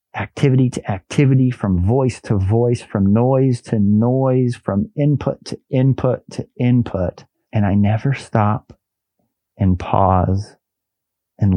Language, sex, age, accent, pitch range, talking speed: English, male, 40-59, American, 110-135 Hz, 125 wpm